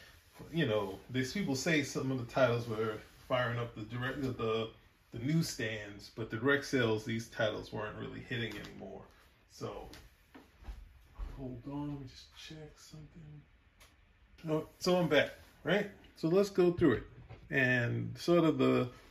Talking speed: 155 wpm